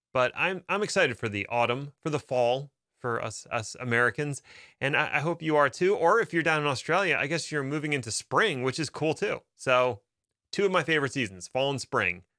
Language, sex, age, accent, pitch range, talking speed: English, male, 30-49, American, 110-150 Hz, 225 wpm